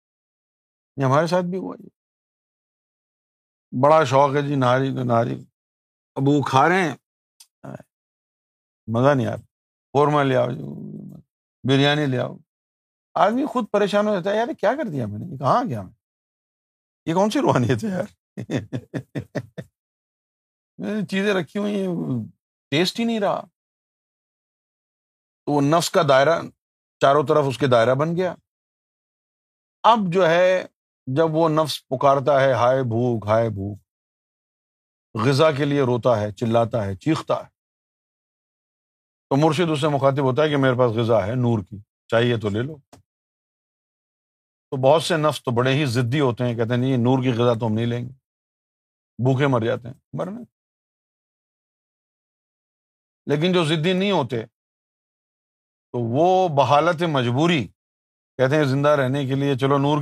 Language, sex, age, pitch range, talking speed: Urdu, male, 50-69, 120-160 Hz, 150 wpm